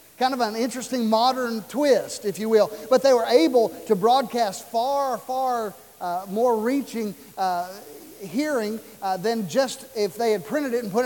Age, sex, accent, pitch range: 50-69, male, American, 210-255 Hz